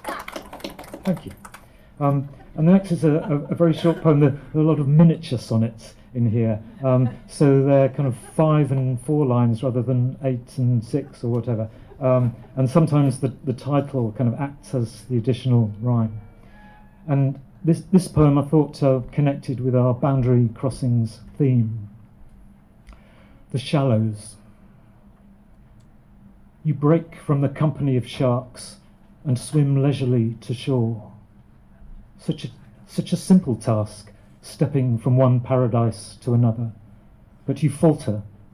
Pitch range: 115-145 Hz